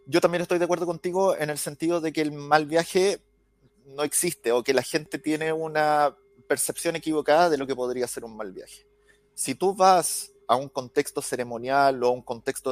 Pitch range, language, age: 130-170 Hz, Spanish, 30-49